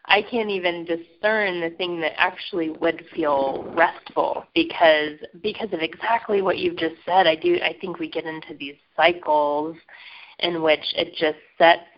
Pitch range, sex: 160-195 Hz, female